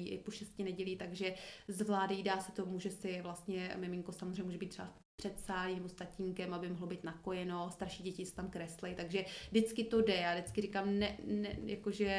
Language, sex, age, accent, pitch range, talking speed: Czech, female, 30-49, native, 185-210 Hz, 190 wpm